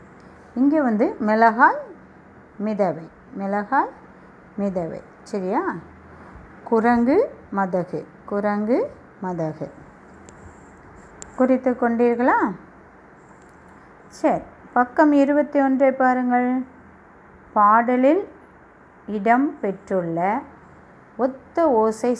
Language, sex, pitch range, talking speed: Tamil, female, 185-240 Hz, 60 wpm